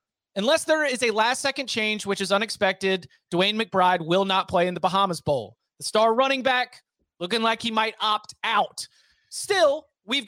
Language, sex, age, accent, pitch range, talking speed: English, male, 30-49, American, 190-250 Hz, 175 wpm